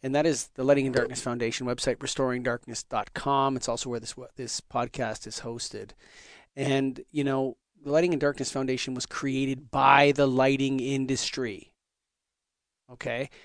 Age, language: 40-59, English